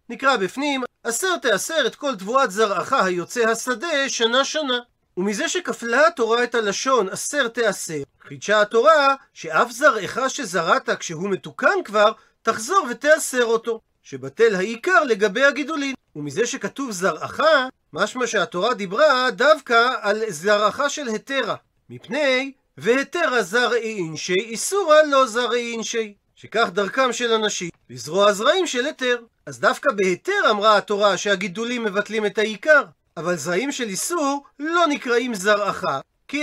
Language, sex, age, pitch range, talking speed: Hebrew, male, 40-59, 205-270 Hz, 130 wpm